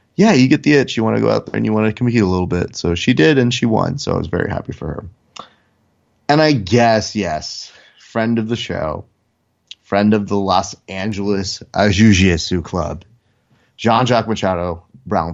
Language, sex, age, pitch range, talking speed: English, male, 30-49, 95-120 Hz, 195 wpm